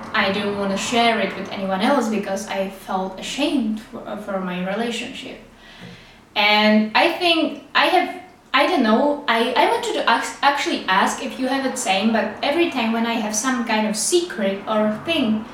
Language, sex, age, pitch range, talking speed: English, female, 20-39, 210-265 Hz, 185 wpm